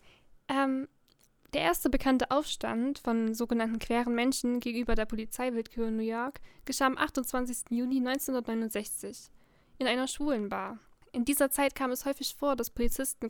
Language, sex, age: German, female, 10-29